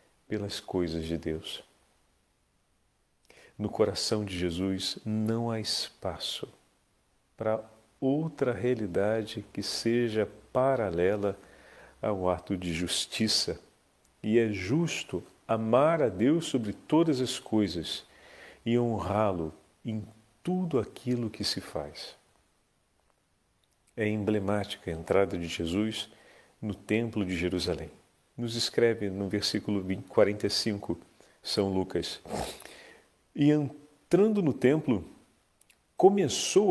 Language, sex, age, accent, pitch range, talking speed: Portuguese, male, 50-69, Brazilian, 100-135 Hz, 100 wpm